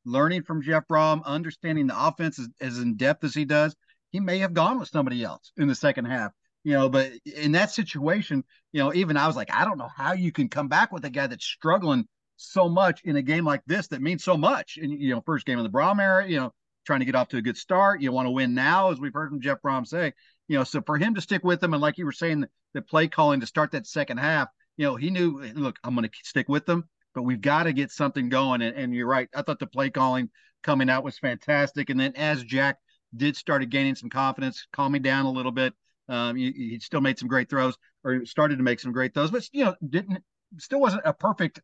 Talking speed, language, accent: 260 wpm, English, American